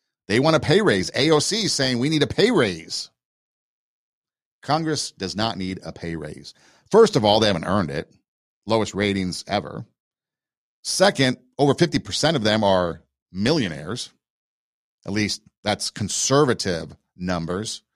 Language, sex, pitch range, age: English, male, 90-125 Hz, 50-69